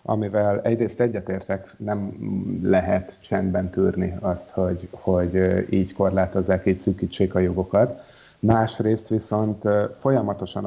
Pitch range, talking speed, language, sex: 95-105 Hz, 105 wpm, Hungarian, male